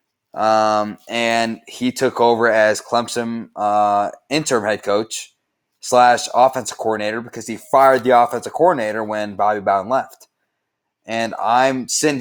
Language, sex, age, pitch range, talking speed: English, male, 20-39, 105-125 Hz, 135 wpm